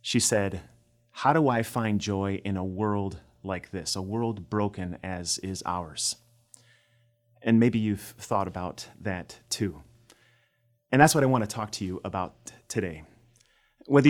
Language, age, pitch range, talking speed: English, 30-49, 95-115 Hz, 160 wpm